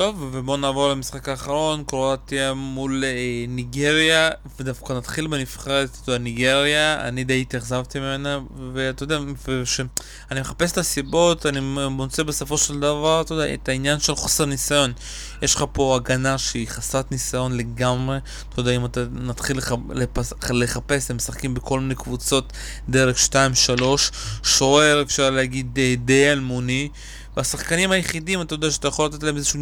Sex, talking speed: male, 160 wpm